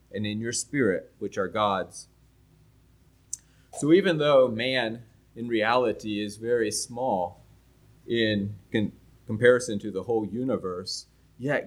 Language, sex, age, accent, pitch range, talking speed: English, male, 30-49, American, 100-125 Hz, 120 wpm